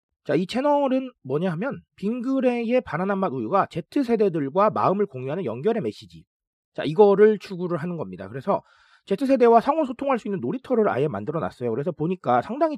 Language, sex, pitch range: Korean, male, 145-220 Hz